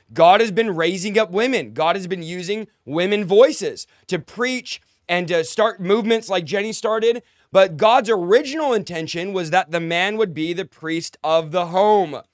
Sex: male